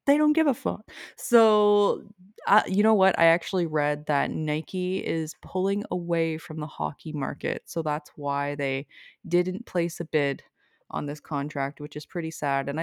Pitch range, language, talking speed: 150-185 Hz, English, 180 wpm